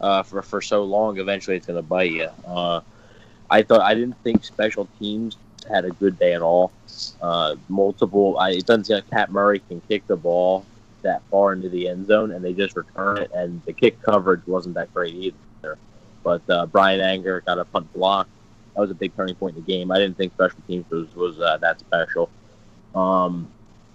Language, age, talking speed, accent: English, 20-39, 220 wpm, American